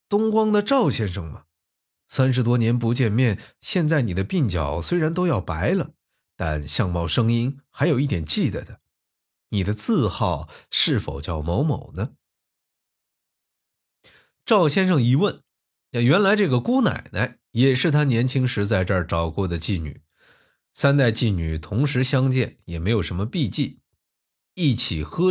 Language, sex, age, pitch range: Chinese, male, 20-39, 85-130 Hz